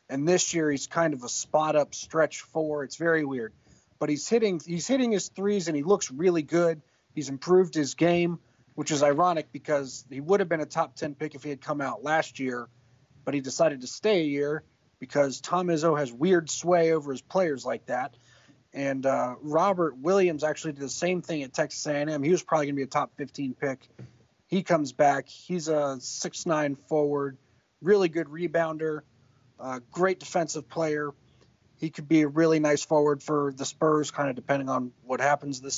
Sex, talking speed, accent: male, 195 wpm, American